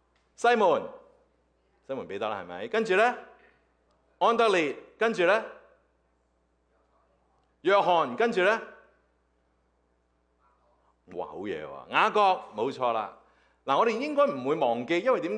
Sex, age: male, 30-49